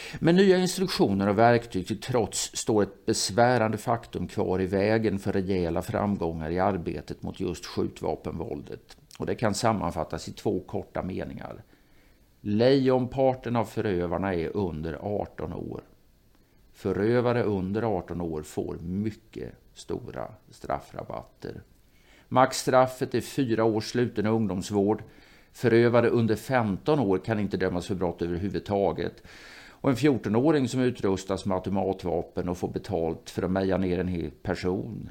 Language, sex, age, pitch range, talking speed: Swedish, male, 50-69, 90-115 Hz, 135 wpm